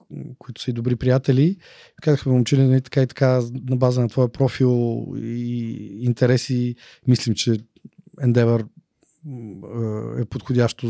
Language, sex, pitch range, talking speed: Bulgarian, male, 120-150 Hz, 115 wpm